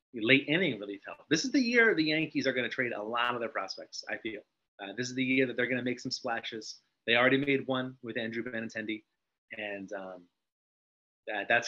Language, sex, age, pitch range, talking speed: English, male, 30-49, 110-130 Hz, 230 wpm